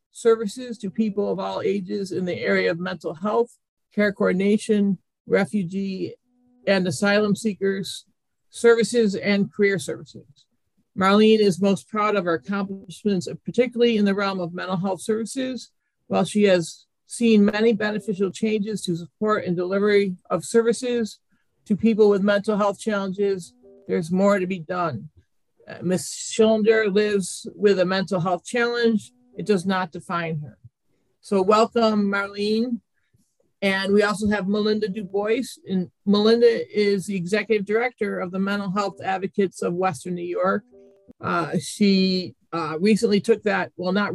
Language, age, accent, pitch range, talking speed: English, 50-69, American, 185-215 Hz, 145 wpm